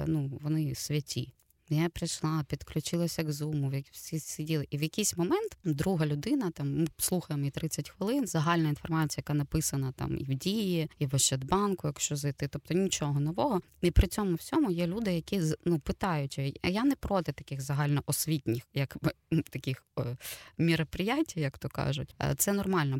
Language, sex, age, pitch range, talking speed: Ukrainian, female, 20-39, 150-185 Hz, 155 wpm